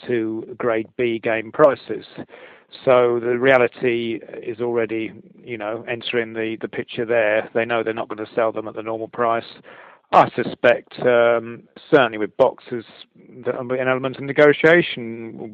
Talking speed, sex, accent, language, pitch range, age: 160 wpm, male, British, English, 115-130 Hz, 40-59